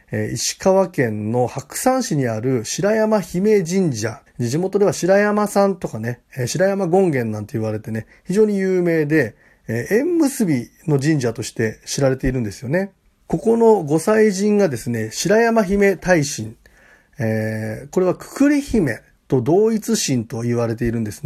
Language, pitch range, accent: Japanese, 115-195 Hz, native